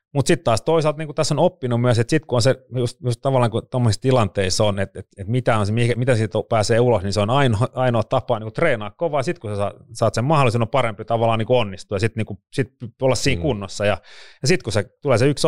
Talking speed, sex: 240 wpm, male